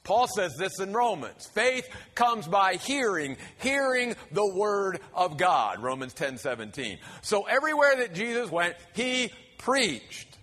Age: 50-69